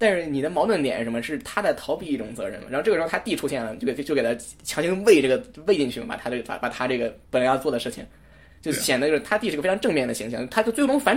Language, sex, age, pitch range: Chinese, male, 10-29, 130-185 Hz